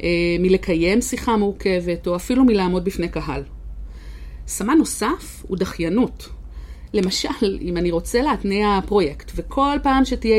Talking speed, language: 120 wpm, Hebrew